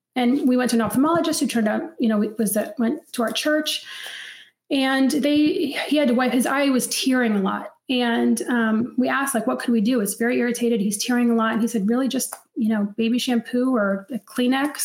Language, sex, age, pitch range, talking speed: English, female, 30-49, 225-265 Hz, 230 wpm